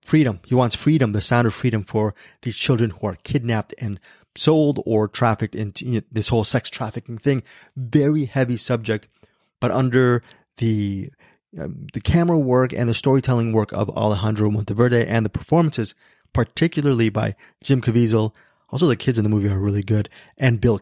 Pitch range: 105-125 Hz